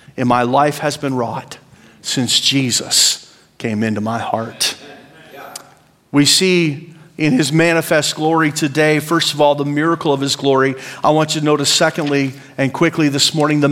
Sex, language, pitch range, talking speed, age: male, English, 145-215 Hz, 165 wpm, 40-59